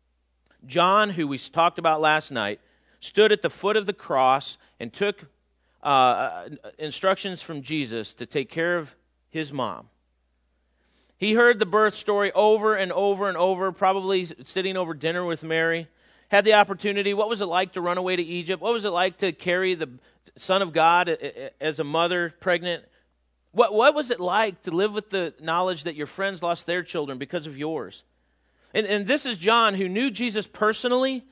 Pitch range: 155-210 Hz